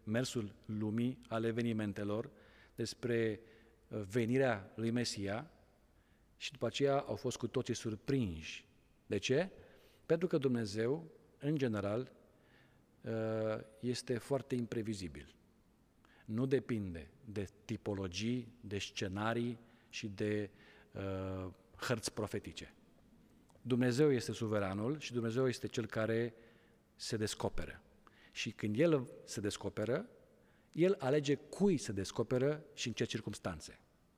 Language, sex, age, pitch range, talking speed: Romanian, male, 40-59, 110-135 Hz, 105 wpm